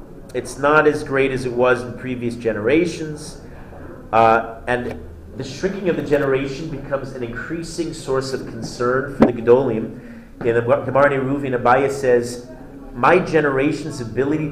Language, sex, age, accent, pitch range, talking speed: English, male, 40-59, American, 115-150 Hz, 145 wpm